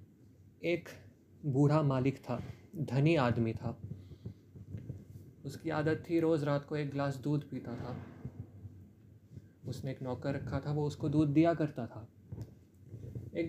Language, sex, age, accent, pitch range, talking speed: Hindi, male, 30-49, native, 115-140 Hz, 135 wpm